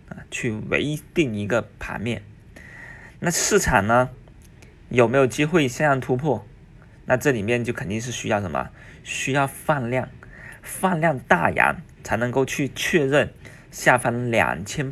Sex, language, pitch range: male, Chinese, 110-140 Hz